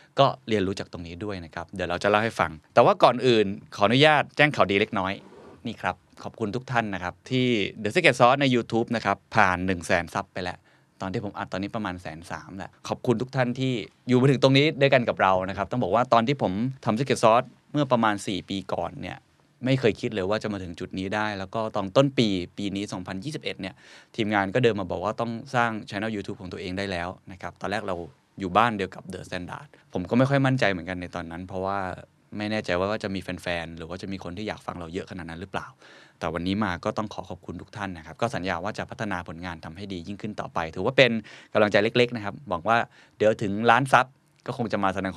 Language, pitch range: Thai, 95-120 Hz